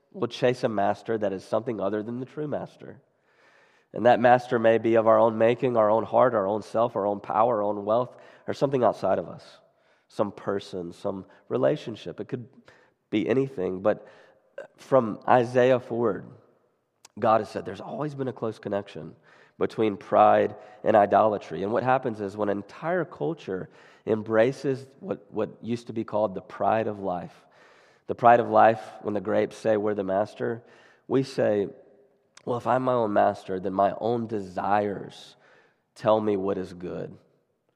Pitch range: 100-120 Hz